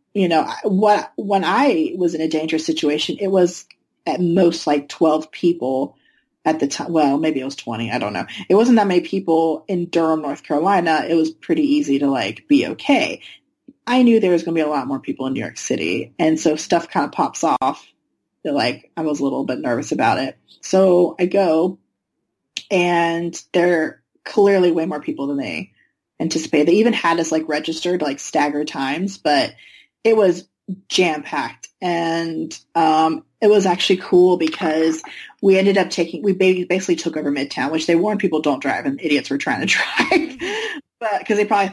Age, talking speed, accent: 30-49, 195 wpm, American